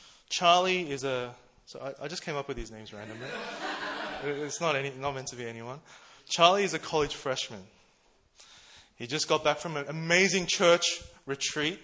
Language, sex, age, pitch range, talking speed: English, male, 20-39, 120-150 Hz, 175 wpm